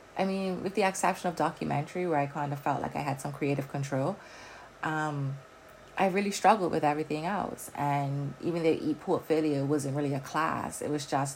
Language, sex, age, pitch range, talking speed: English, female, 30-49, 135-170 Hz, 190 wpm